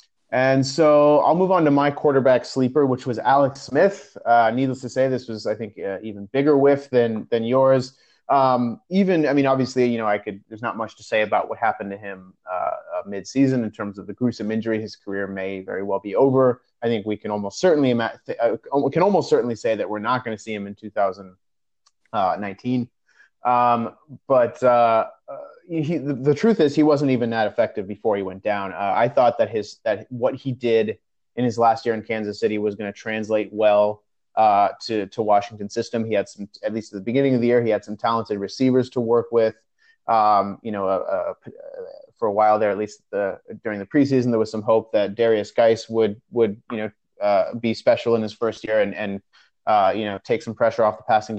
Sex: male